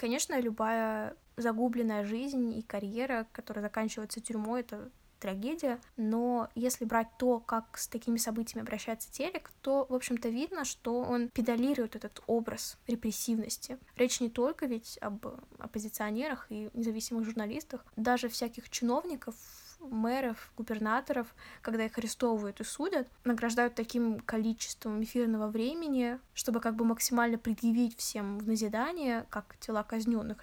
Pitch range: 220-240 Hz